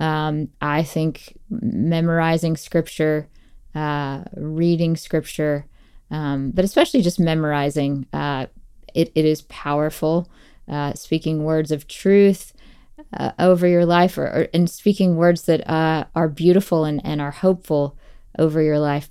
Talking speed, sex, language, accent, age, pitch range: 135 wpm, female, English, American, 20-39, 155-180 Hz